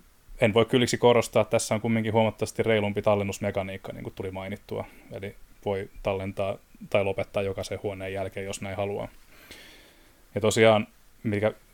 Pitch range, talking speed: 100-110 Hz, 150 wpm